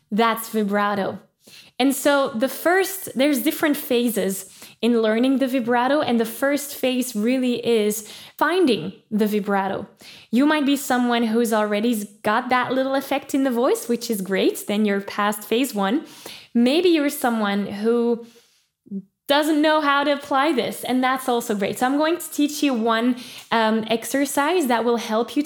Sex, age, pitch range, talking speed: female, 10-29, 225-285 Hz, 165 wpm